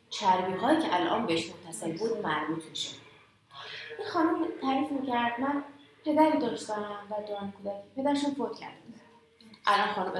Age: 30-49